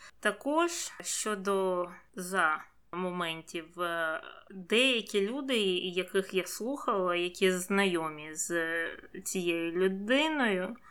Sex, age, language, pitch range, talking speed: female, 20-39, Ukrainian, 180-210 Hz, 75 wpm